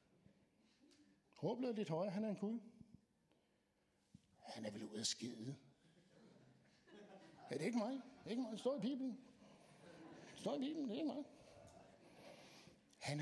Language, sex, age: Danish, male, 60-79